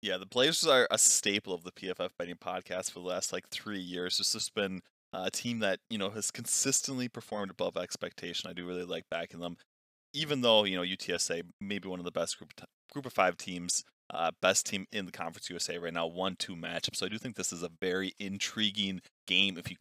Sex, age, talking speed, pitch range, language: male, 20-39, 235 wpm, 85-100 Hz, English